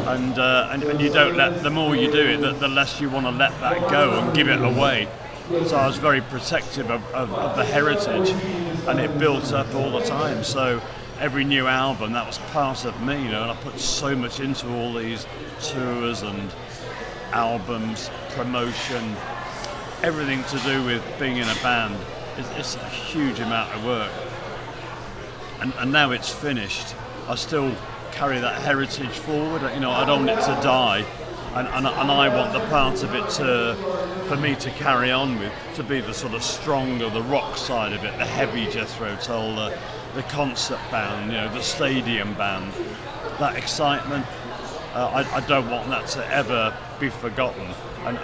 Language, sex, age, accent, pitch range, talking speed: English, male, 40-59, British, 120-145 Hz, 190 wpm